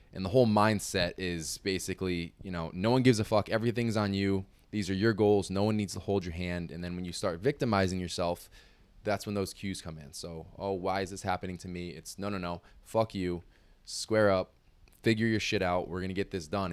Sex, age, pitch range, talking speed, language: male, 20-39, 85-100 Hz, 235 wpm, English